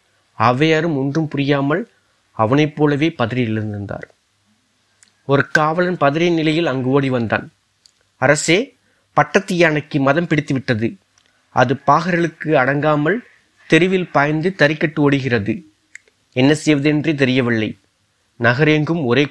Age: 30-49